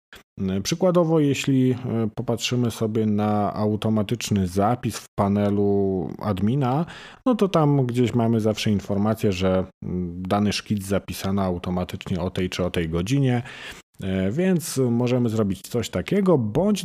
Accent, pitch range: native, 95-130 Hz